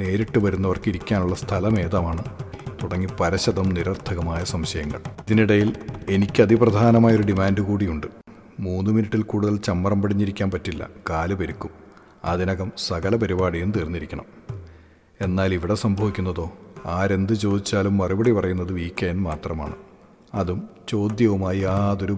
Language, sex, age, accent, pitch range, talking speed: Malayalam, male, 40-59, native, 90-110 Hz, 105 wpm